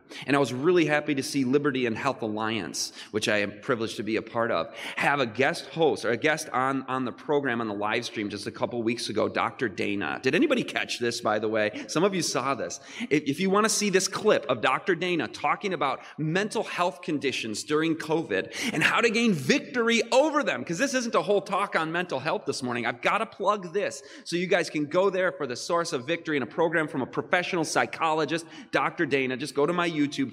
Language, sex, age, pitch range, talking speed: English, male, 30-49, 125-190 Hz, 235 wpm